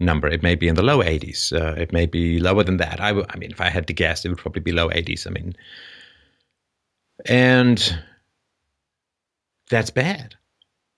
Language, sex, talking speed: English, male, 185 wpm